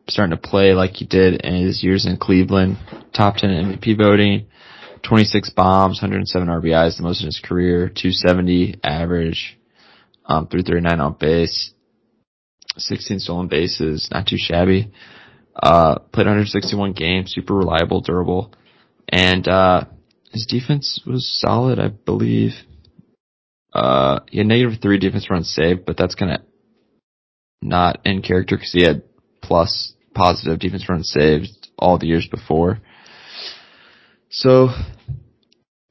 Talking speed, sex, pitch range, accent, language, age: 135 wpm, male, 85-100 Hz, American, English, 20-39